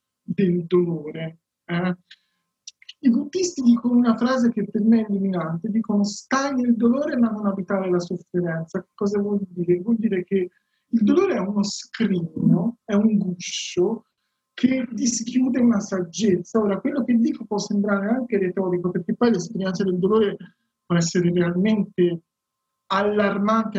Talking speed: 145 wpm